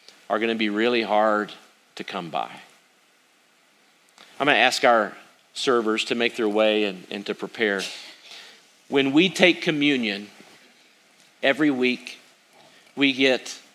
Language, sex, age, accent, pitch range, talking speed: English, male, 40-59, American, 120-140 Hz, 125 wpm